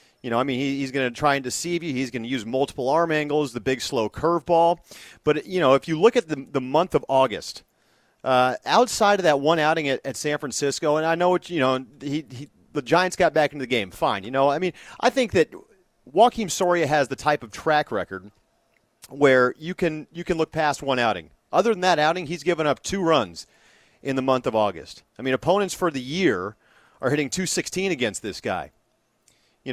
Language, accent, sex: English, American, male